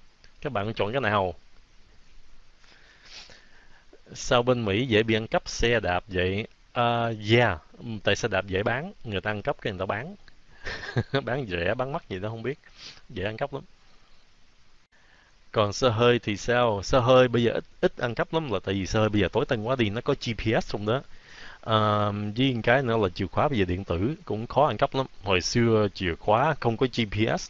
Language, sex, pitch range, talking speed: Vietnamese, male, 100-130 Hz, 205 wpm